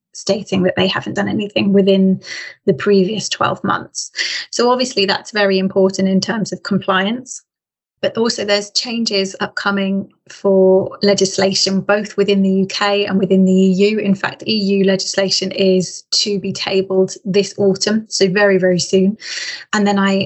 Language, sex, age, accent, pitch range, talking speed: English, female, 20-39, British, 190-205 Hz, 155 wpm